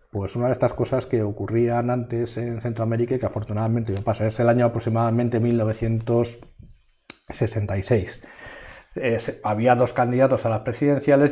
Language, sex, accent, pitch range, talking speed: Spanish, male, Spanish, 110-125 Hz, 145 wpm